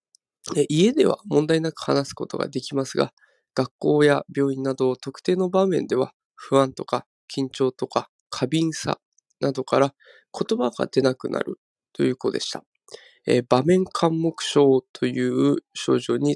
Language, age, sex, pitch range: Japanese, 20-39, male, 130-165 Hz